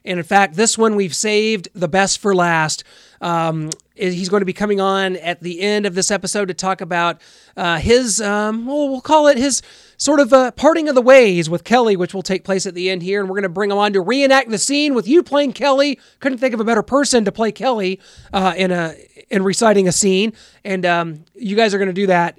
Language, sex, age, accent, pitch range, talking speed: English, male, 30-49, American, 185-230 Hz, 245 wpm